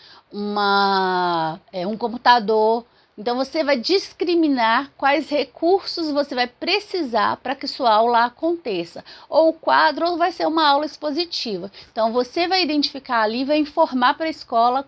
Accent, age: Brazilian, 40-59